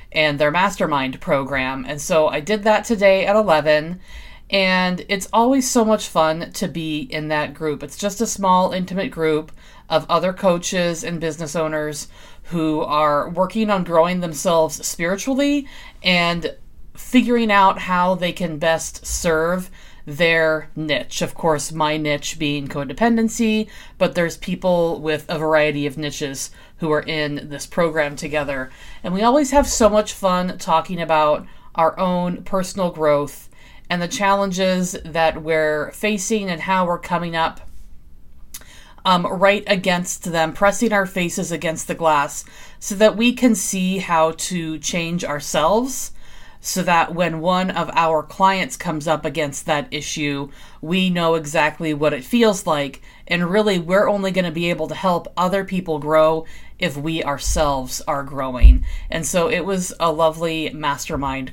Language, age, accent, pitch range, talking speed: English, 30-49, American, 150-190 Hz, 155 wpm